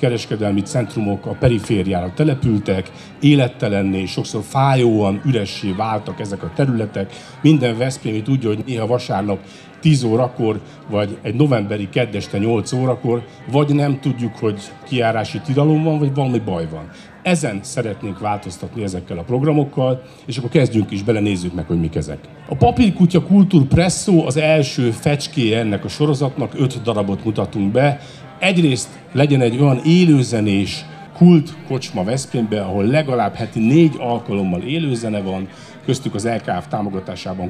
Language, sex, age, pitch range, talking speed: Hungarian, male, 50-69, 100-145 Hz, 135 wpm